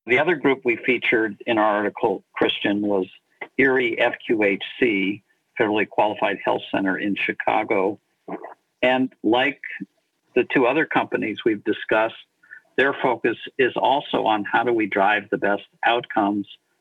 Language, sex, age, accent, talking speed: English, male, 50-69, American, 135 wpm